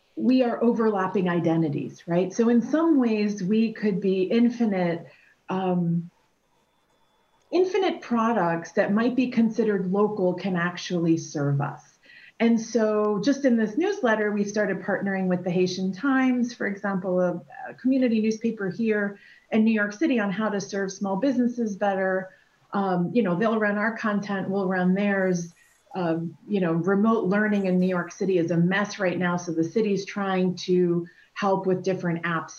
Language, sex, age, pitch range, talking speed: English, female, 40-59, 180-230 Hz, 165 wpm